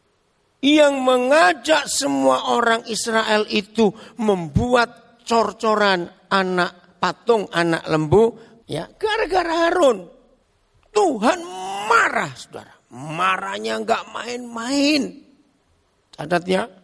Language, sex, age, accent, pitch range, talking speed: English, male, 50-69, Indonesian, 155-240 Hz, 80 wpm